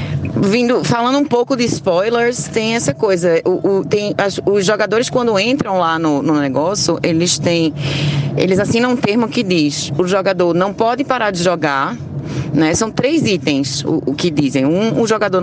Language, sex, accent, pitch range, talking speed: Portuguese, female, Brazilian, 155-235 Hz, 185 wpm